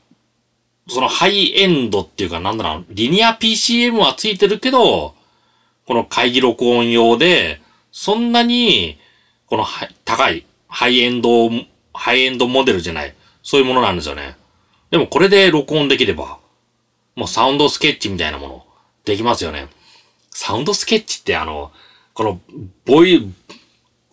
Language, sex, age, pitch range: Japanese, male, 30-49, 115-175 Hz